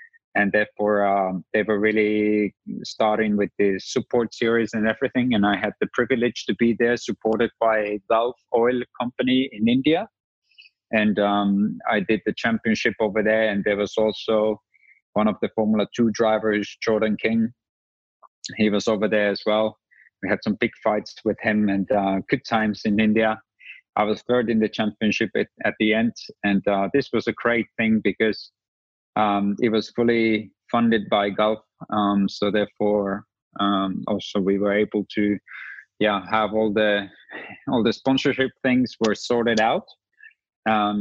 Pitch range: 105-120 Hz